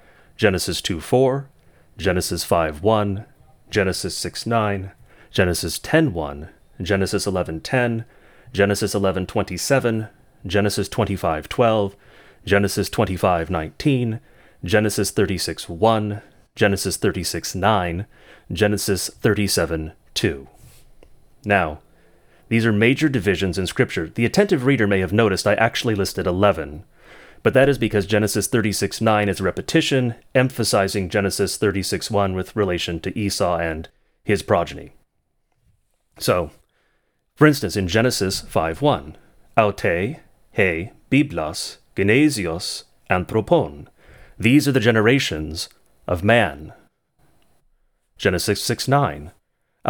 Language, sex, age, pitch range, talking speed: English, male, 30-49, 95-115 Hz, 95 wpm